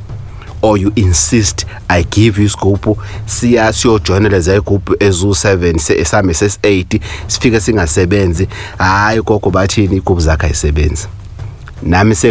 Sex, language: male, English